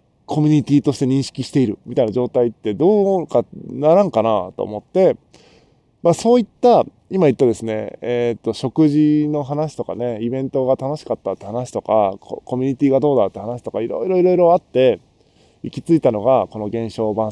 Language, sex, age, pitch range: Japanese, male, 20-39, 110-145 Hz